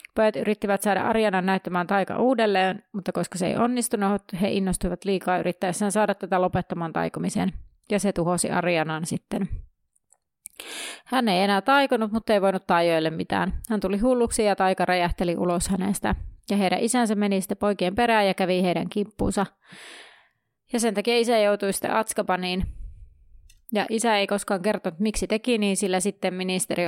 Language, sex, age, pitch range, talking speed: Finnish, female, 30-49, 180-215 Hz, 160 wpm